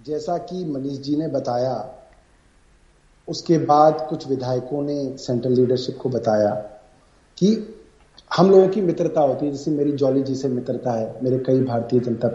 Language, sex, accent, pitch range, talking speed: Hindi, male, native, 130-175 Hz, 160 wpm